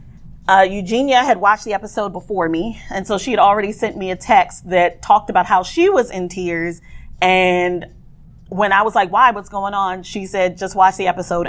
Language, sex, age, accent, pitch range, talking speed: English, female, 30-49, American, 175-215 Hz, 210 wpm